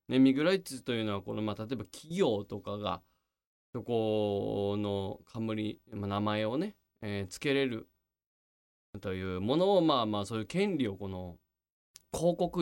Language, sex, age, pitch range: Japanese, male, 20-39, 100-155 Hz